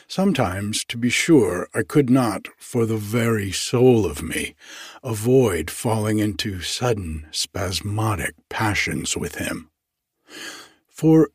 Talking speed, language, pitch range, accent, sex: 115 wpm, English, 95-125 Hz, American, male